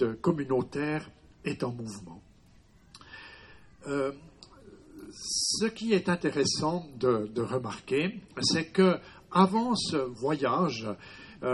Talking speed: 85 wpm